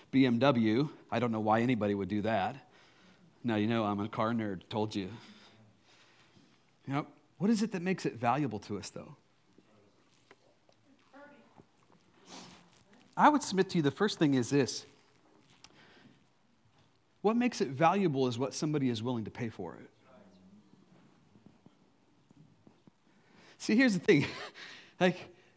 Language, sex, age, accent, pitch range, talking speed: English, male, 40-59, American, 120-185 Hz, 135 wpm